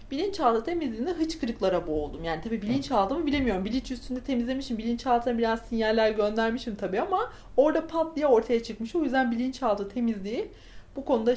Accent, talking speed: native, 155 wpm